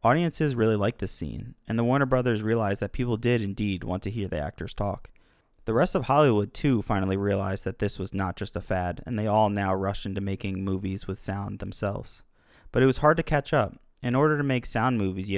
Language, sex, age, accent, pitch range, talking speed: English, male, 20-39, American, 100-120 Hz, 230 wpm